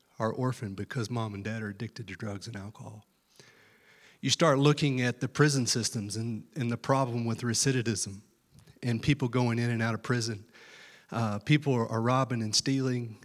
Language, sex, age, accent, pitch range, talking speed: English, male, 30-49, American, 110-140 Hz, 175 wpm